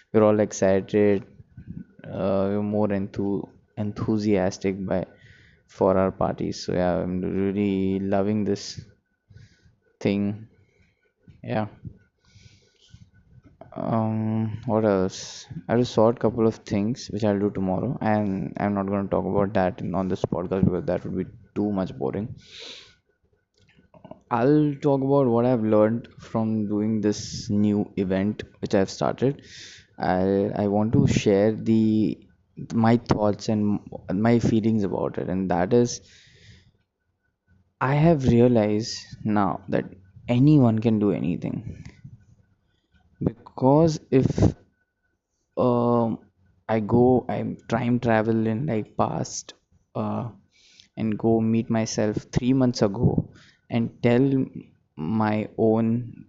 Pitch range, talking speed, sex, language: 100-115 Hz, 125 wpm, male, English